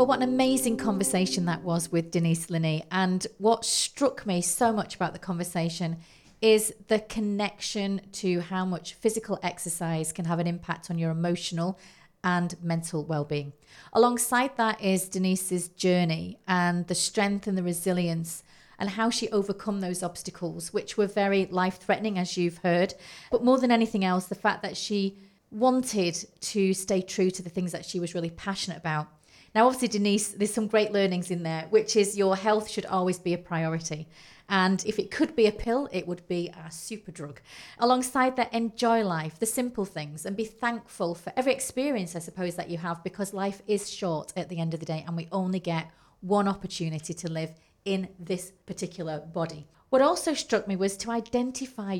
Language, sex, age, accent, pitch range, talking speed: English, female, 40-59, British, 175-215 Hz, 185 wpm